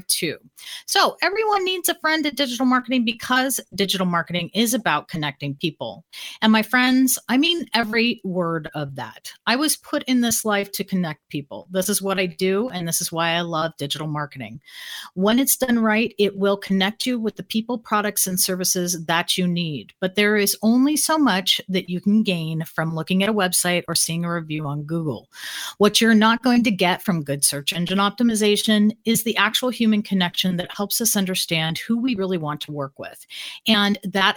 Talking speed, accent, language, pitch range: 195 wpm, American, English, 175-230 Hz